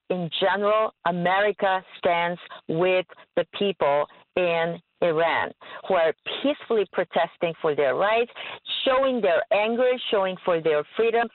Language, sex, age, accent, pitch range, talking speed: English, female, 50-69, American, 180-240 Hz, 120 wpm